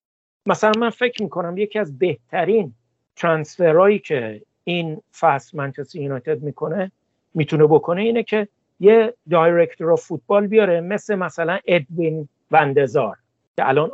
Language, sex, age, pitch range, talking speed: Persian, male, 60-79, 145-195 Hz, 120 wpm